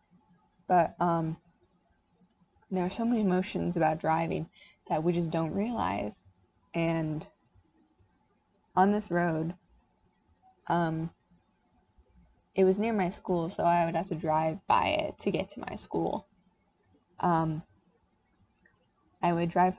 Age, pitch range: 20-39, 155-185 Hz